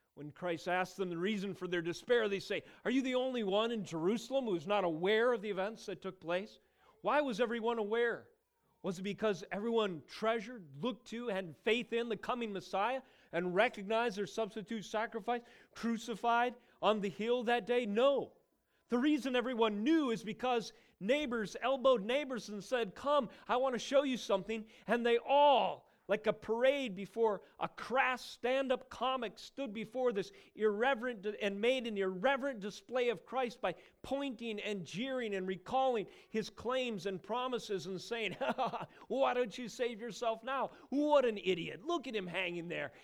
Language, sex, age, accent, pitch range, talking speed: English, male, 40-59, American, 195-250 Hz, 170 wpm